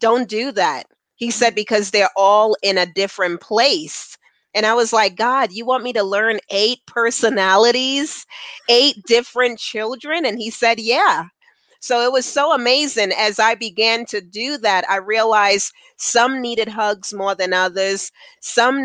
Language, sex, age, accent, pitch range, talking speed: English, female, 40-59, American, 195-235 Hz, 160 wpm